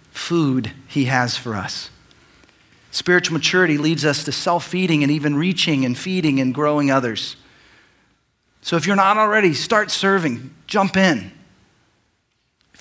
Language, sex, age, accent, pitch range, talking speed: English, male, 40-59, American, 135-175 Hz, 135 wpm